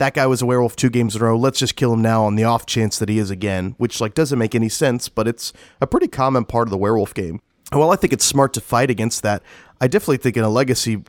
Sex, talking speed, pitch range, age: male, 300 wpm, 105-125 Hz, 30-49